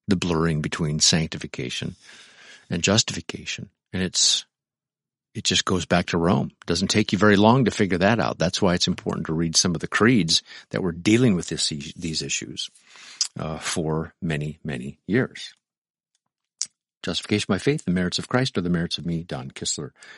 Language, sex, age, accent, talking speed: English, male, 50-69, American, 180 wpm